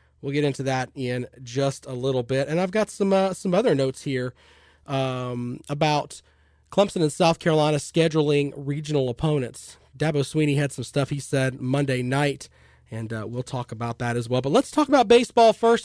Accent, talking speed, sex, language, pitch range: American, 190 wpm, male, English, 125-175 Hz